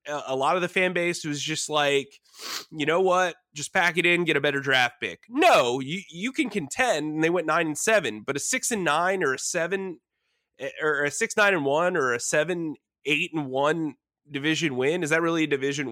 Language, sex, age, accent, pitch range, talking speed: English, male, 20-39, American, 145-185 Hz, 220 wpm